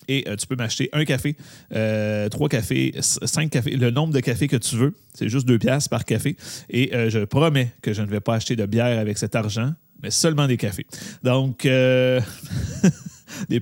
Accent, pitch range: Canadian, 115-140 Hz